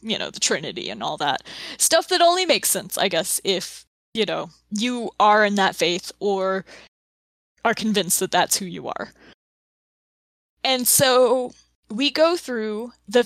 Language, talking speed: English, 165 wpm